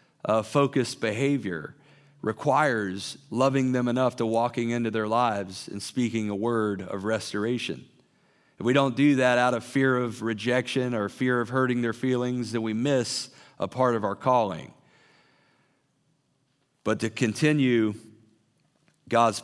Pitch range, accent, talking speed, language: 110-130 Hz, American, 140 wpm, English